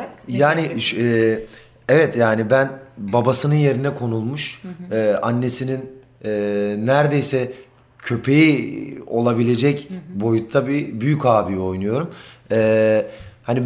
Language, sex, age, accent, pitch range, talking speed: Turkish, male, 40-59, native, 115-145 Hz, 90 wpm